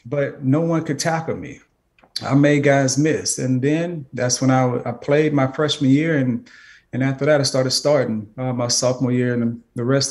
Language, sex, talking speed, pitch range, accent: English, male, 210 wpm, 120-145 Hz, American